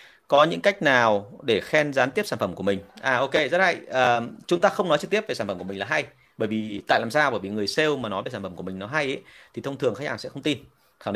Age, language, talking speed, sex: 30-49, Vietnamese, 310 wpm, male